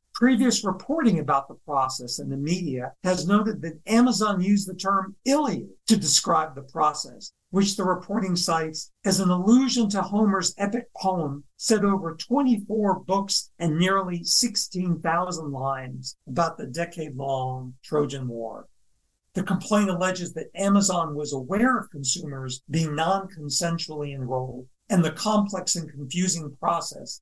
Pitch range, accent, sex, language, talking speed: 145-190 Hz, American, male, English, 135 wpm